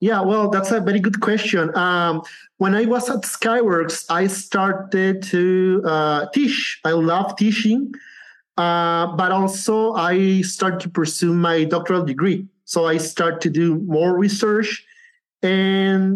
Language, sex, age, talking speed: English, male, 30-49, 145 wpm